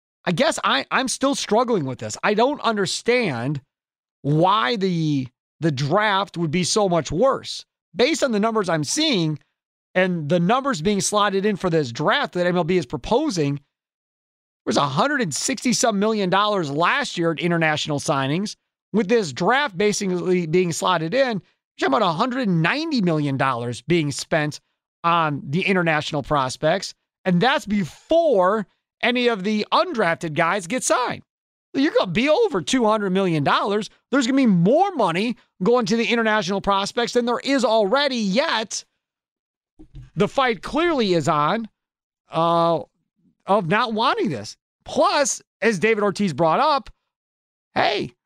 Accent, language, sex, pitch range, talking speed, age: American, English, male, 165-235 Hz, 150 wpm, 30-49